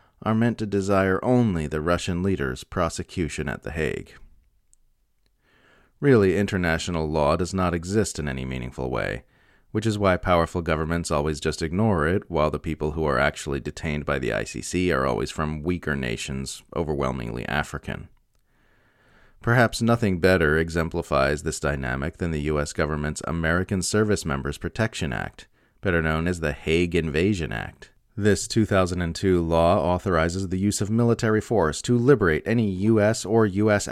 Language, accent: English, American